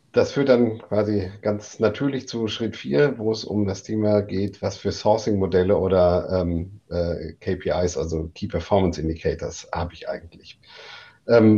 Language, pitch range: German, 90-110 Hz